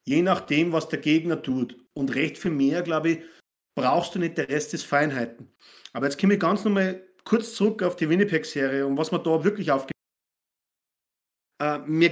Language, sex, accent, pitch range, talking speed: German, male, German, 150-195 Hz, 190 wpm